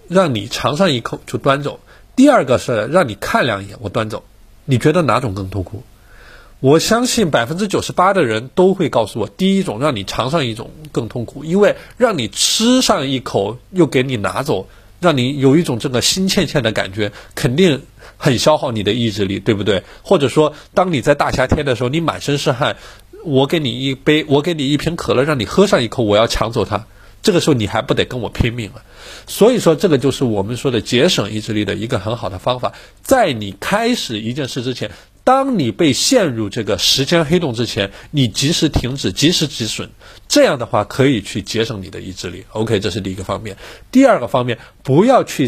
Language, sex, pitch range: Chinese, male, 110-155 Hz